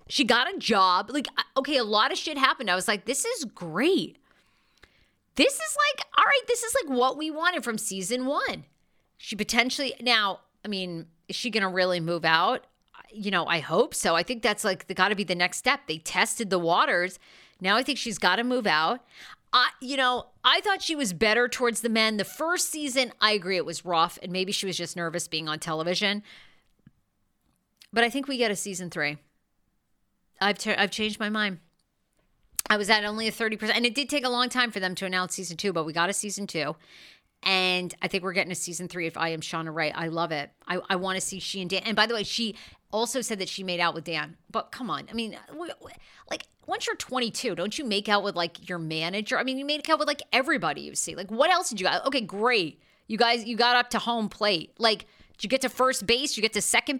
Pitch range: 180-250 Hz